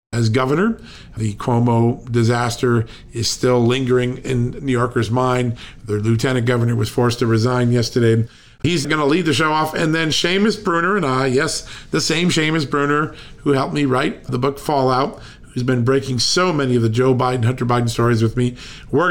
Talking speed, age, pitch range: 190 wpm, 50-69, 115-145 Hz